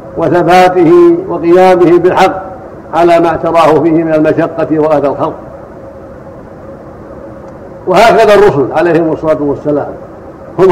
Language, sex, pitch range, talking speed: Arabic, male, 155-185 Hz, 95 wpm